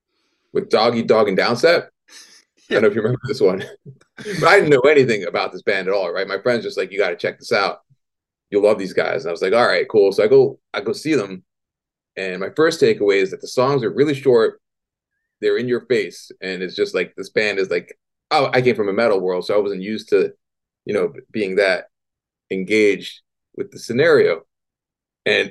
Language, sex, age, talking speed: English, male, 30-49, 225 wpm